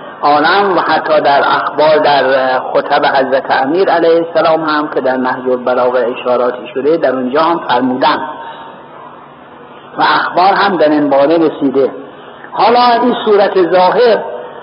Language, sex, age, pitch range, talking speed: Persian, male, 50-69, 165-210 Hz, 135 wpm